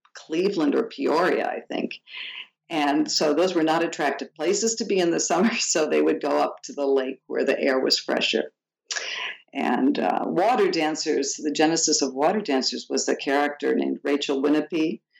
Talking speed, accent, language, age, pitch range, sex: 180 wpm, American, English, 50-69, 145-165 Hz, female